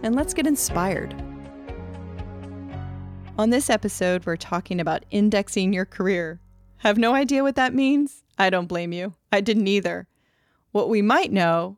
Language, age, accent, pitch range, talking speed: English, 30-49, American, 175-230 Hz, 160 wpm